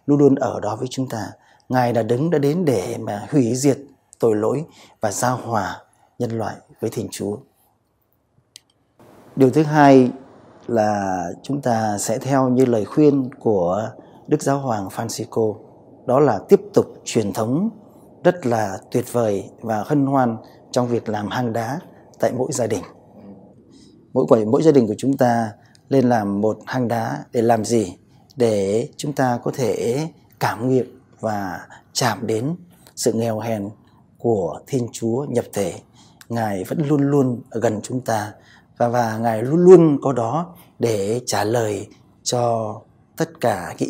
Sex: male